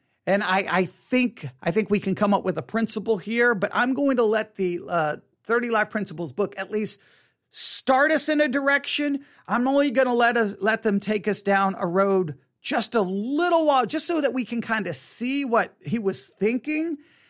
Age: 40-59